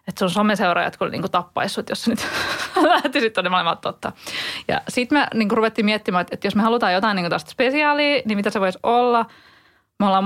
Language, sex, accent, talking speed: English, female, Finnish, 200 wpm